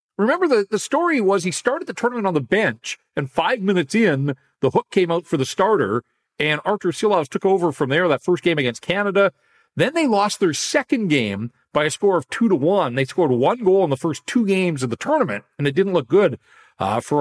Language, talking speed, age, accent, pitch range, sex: English, 235 wpm, 40-59, American, 150-225 Hz, male